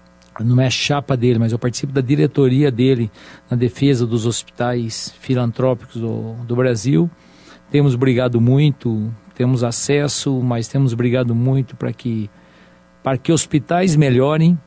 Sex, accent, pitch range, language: male, Brazilian, 120-145 Hz, Portuguese